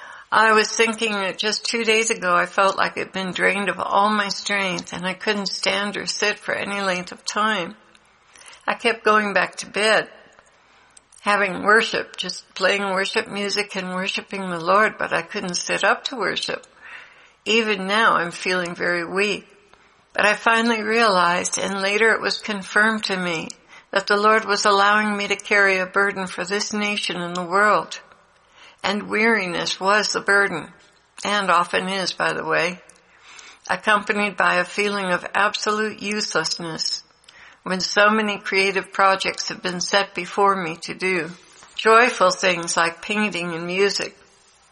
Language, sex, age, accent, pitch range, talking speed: English, female, 60-79, American, 185-215 Hz, 160 wpm